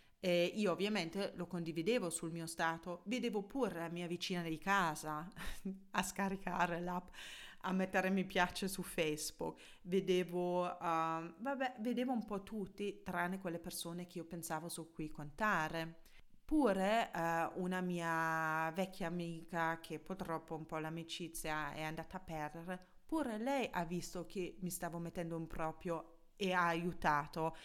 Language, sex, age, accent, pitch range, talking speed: Italian, female, 30-49, native, 165-200 Hz, 150 wpm